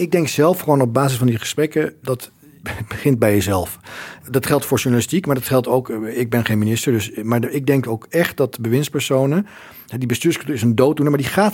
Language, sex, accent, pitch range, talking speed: Dutch, male, Dutch, 115-145 Hz, 215 wpm